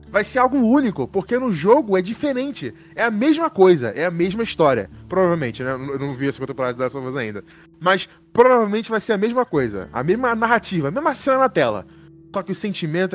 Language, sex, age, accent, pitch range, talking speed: Portuguese, male, 20-39, Brazilian, 175-265 Hz, 225 wpm